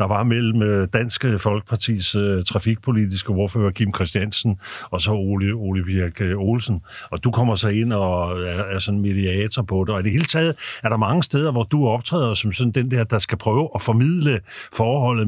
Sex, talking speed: male, 190 wpm